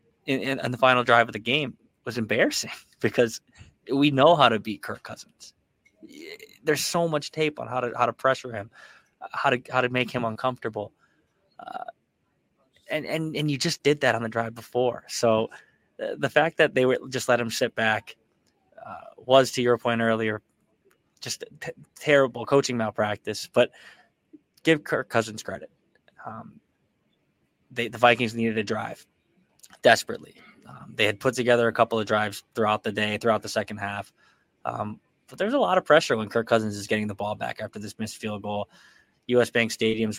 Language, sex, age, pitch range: English, male, 20-39, 110-130 Hz